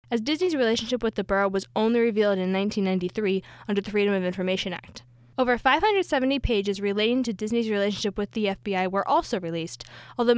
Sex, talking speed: female, 180 wpm